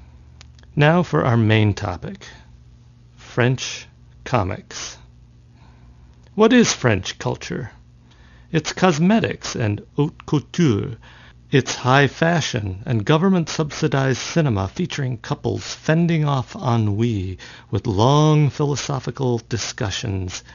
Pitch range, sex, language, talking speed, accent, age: 95-135 Hz, male, English, 90 wpm, American, 60-79